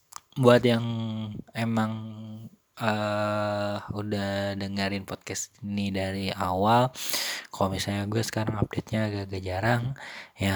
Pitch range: 100-115 Hz